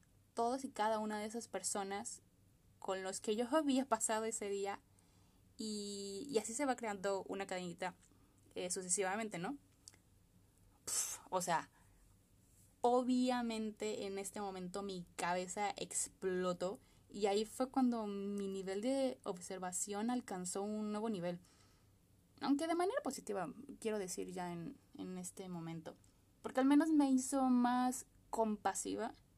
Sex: female